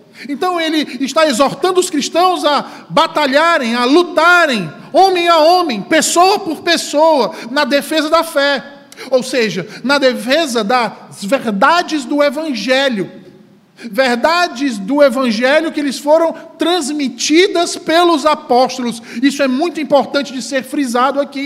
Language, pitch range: Portuguese, 235-305 Hz